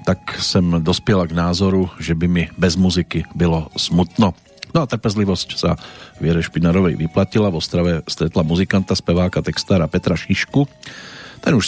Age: 40-59